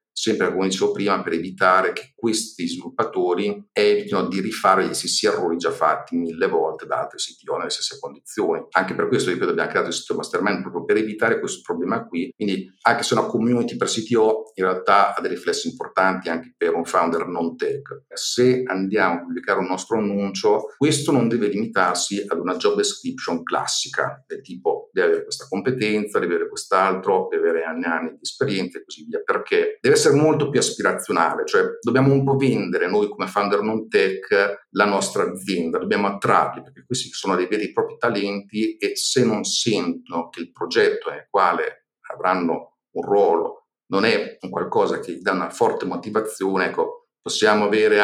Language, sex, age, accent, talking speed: Italian, male, 50-69, native, 180 wpm